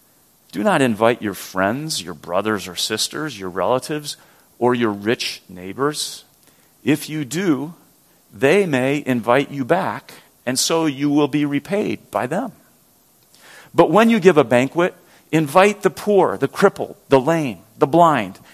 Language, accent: English, American